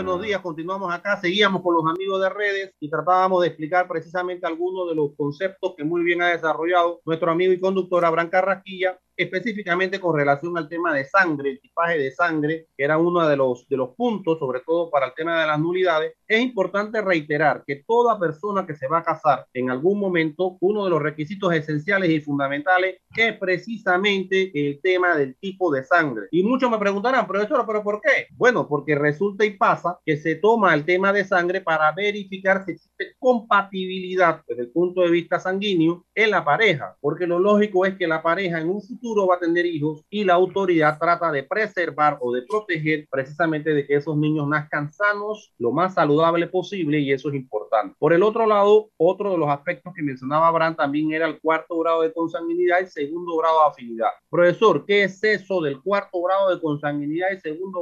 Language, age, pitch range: Spanish, 30-49, 155-190 Hz